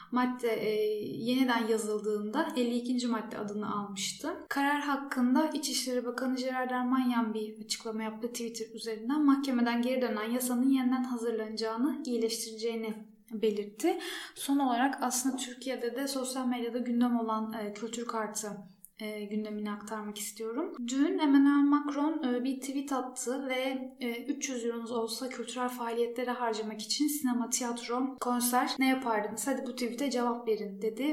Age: 10-29